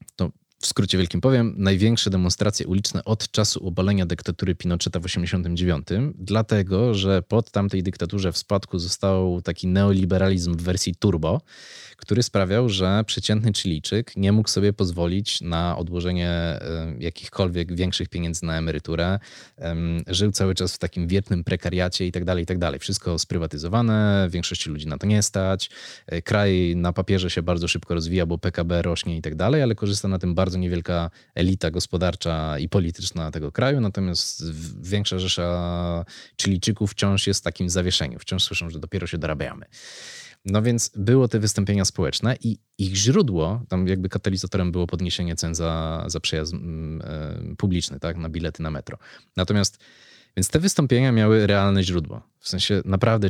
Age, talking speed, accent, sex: 20-39, 155 wpm, native, male